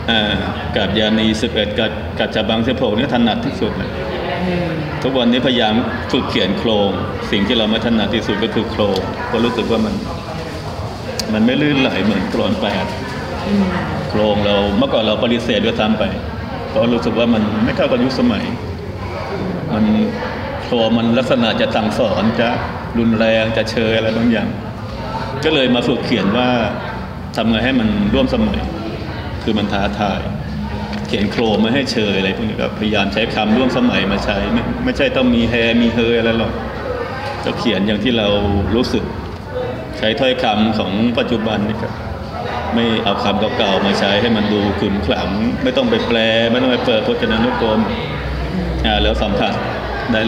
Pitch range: 105-115 Hz